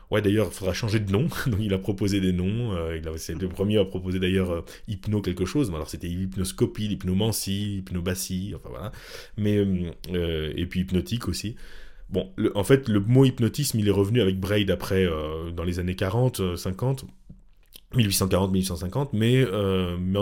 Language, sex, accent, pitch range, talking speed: French, male, French, 90-120 Hz, 185 wpm